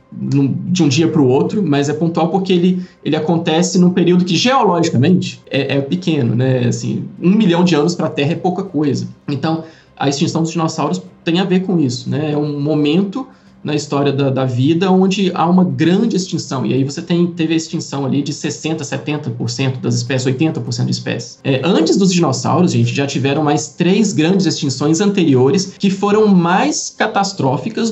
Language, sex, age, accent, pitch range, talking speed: Portuguese, male, 20-39, Brazilian, 135-180 Hz, 190 wpm